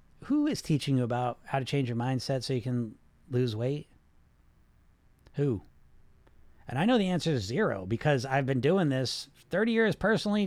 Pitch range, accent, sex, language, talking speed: 130-180 Hz, American, male, English, 180 wpm